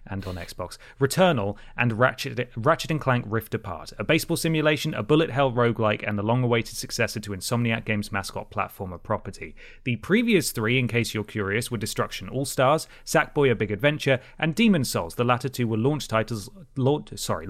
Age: 30-49